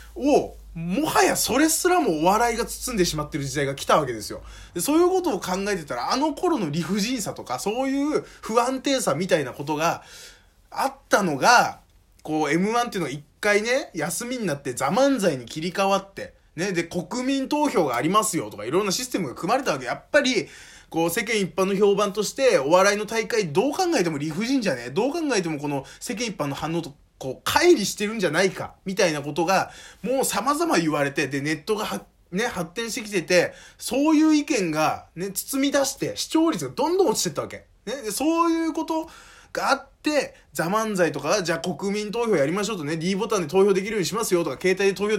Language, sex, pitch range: Japanese, male, 170-255 Hz